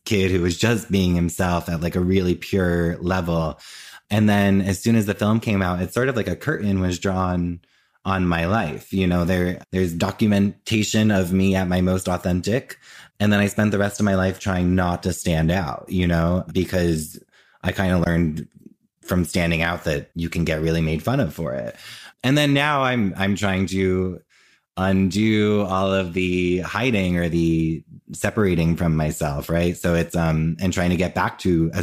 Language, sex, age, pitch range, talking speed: English, male, 20-39, 85-100 Hz, 200 wpm